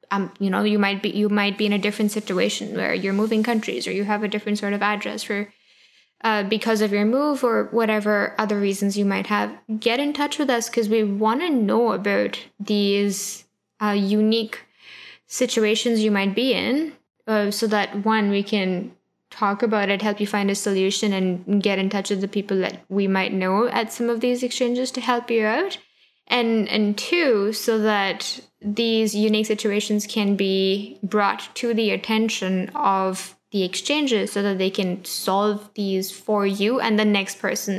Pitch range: 195-220 Hz